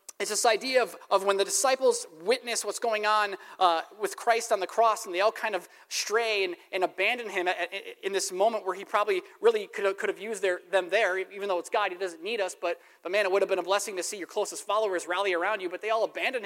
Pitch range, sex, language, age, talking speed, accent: 180-250 Hz, male, English, 30-49, 270 wpm, American